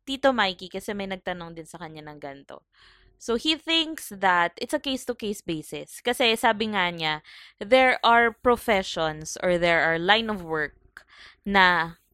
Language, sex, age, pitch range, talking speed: English, female, 20-39, 165-230 Hz, 160 wpm